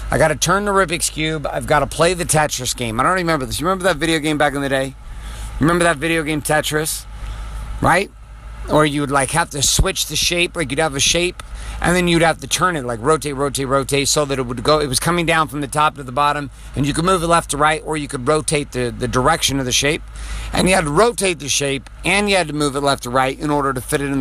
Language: English